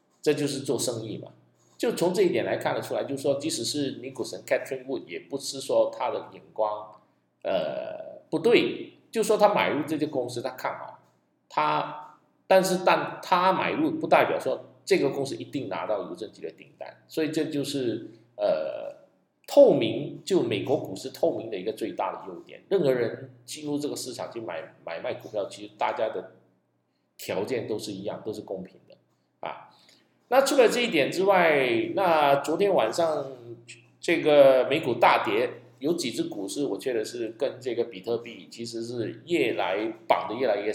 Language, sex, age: Chinese, male, 50-69